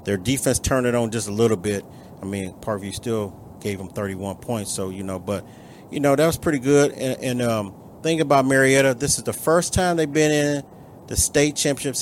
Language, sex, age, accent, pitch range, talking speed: English, male, 40-59, American, 105-130 Hz, 220 wpm